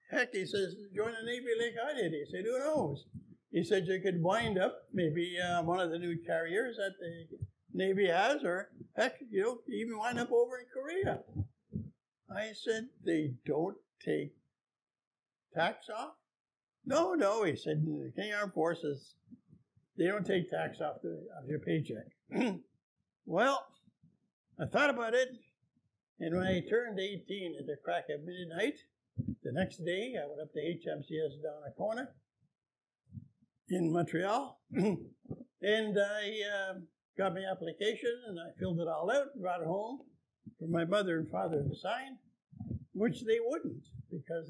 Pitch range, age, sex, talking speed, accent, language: 160-210 Hz, 60-79, male, 160 wpm, American, English